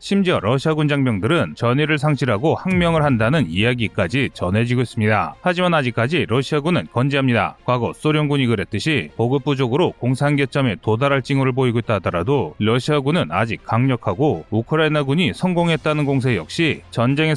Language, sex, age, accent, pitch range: Korean, male, 30-49, native, 120-155 Hz